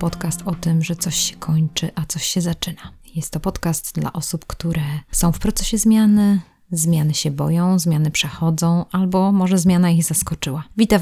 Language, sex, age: Polish, female, 20-39